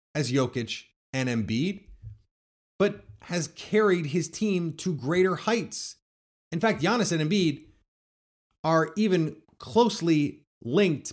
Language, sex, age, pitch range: English, male, 30-49, 110-165 Hz